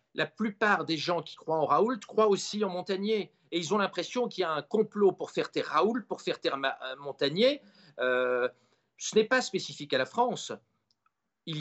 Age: 50-69